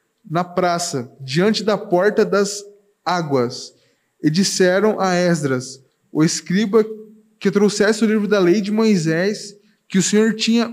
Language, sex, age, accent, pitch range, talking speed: Portuguese, male, 20-39, Brazilian, 180-220 Hz, 140 wpm